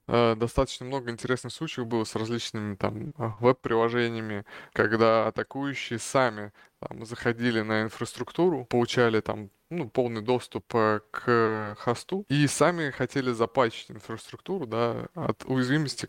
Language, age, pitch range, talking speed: Russian, 20-39, 110-125 Hz, 115 wpm